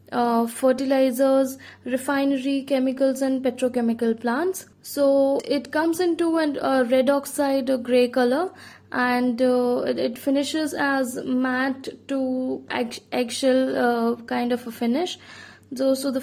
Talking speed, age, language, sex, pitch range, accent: 130 wpm, 10-29, English, female, 245-280 Hz, Indian